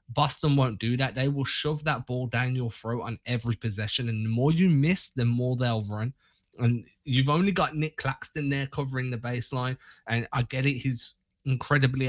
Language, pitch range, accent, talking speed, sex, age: English, 115-140 Hz, British, 200 wpm, male, 20-39